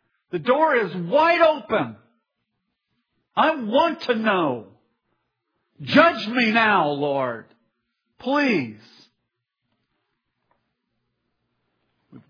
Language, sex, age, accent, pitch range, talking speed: English, male, 50-69, American, 160-255 Hz, 75 wpm